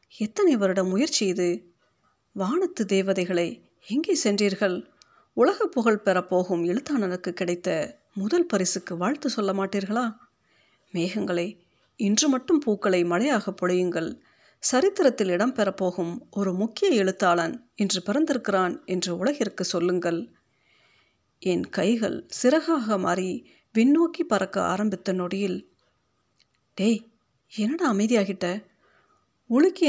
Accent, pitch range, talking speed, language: native, 185-250 Hz, 90 wpm, Tamil